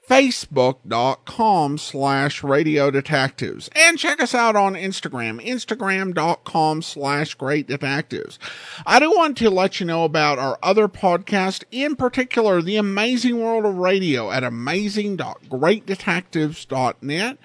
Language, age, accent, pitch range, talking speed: English, 50-69, American, 155-215 Hz, 115 wpm